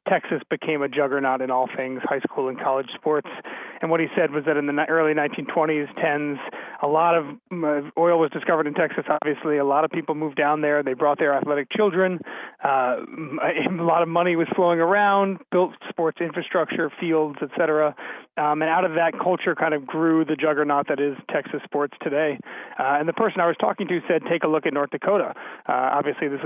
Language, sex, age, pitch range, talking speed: English, male, 30-49, 145-170 Hz, 210 wpm